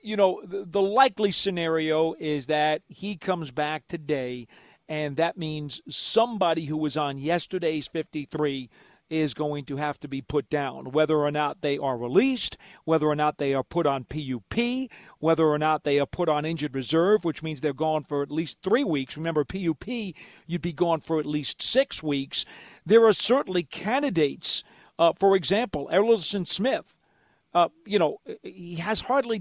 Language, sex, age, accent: English, male, 50-69, American